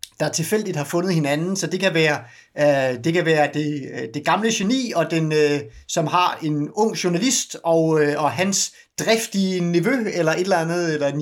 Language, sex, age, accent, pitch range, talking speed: Danish, male, 30-49, native, 145-195 Hz, 180 wpm